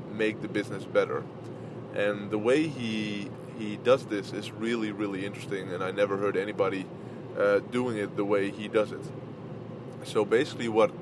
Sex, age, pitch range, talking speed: male, 20-39, 105-125 Hz, 170 wpm